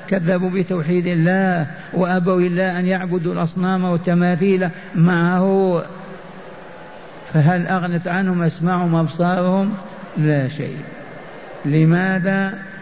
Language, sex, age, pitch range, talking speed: Arabic, male, 60-79, 160-185 Hz, 85 wpm